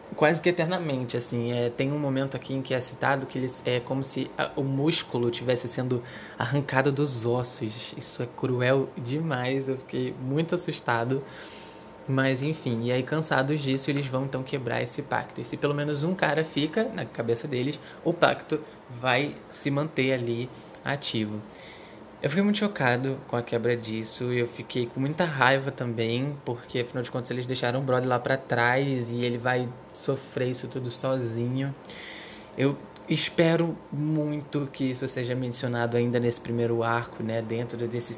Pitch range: 120-145 Hz